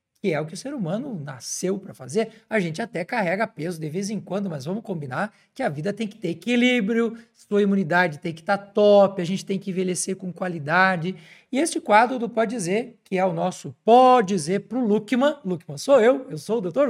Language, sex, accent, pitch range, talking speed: Portuguese, male, Brazilian, 180-225 Hz, 225 wpm